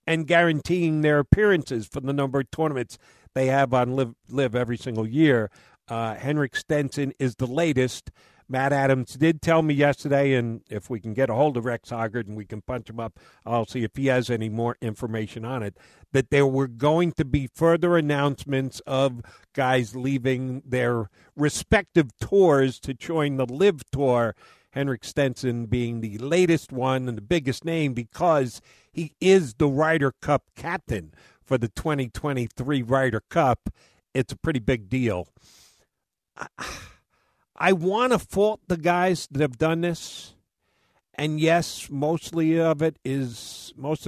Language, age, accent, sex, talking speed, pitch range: English, 50-69, American, male, 160 wpm, 120-150 Hz